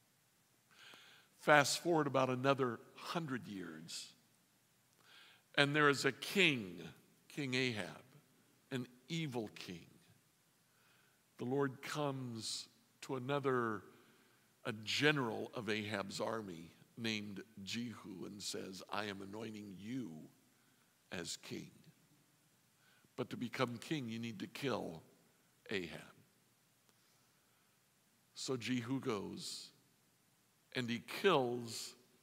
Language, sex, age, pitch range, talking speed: English, male, 60-79, 120-160 Hz, 95 wpm